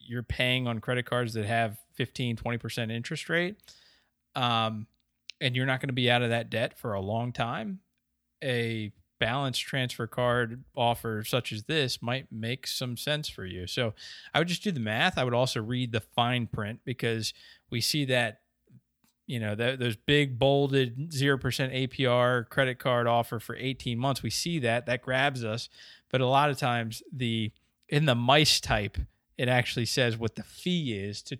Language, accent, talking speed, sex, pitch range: English, American, 185 wpm, male, 110-130 Hz